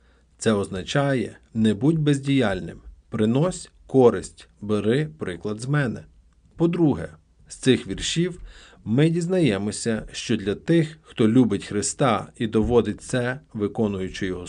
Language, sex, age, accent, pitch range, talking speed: Ukrainian, male, 50-69, native, 100-140 Hz, 115 wpm